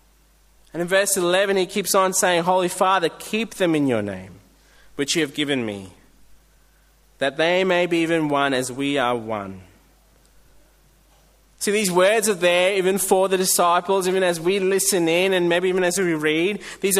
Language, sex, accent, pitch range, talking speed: English, male, Australian, 150-195 Hz, 180 wpm